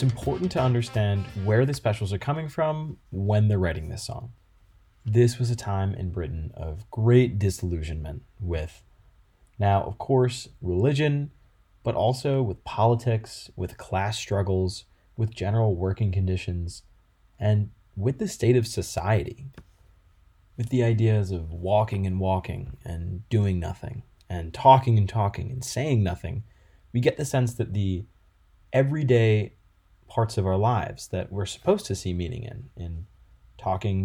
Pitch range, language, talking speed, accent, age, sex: 95-120 Hz, English, 145 wpm, American, 20-39, male